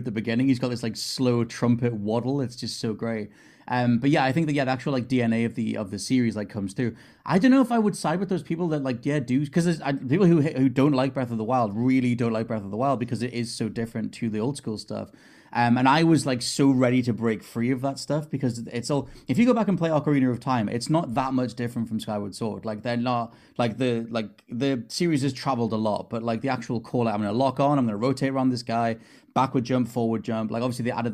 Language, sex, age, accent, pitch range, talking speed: English, male, 30-49, British, 115-135 Hz, 280 wpm